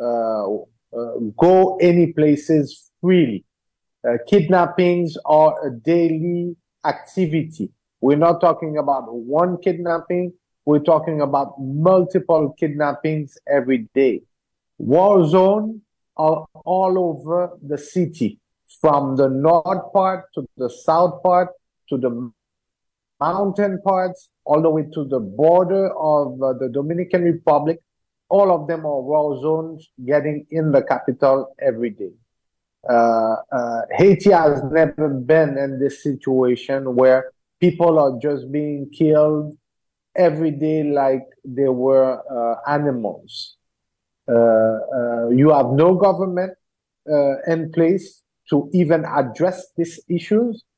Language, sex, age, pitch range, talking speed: English, male, 50-69, 135-175 Hz, 120 wpm